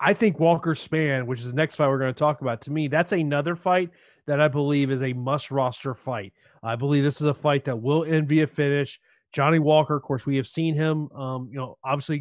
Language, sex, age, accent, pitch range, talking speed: English, male, 30-49, American, 135-155 Hz, 245 wpm